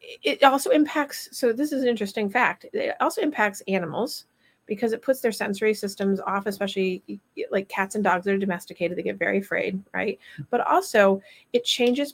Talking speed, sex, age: 185 wpm, female, 40-59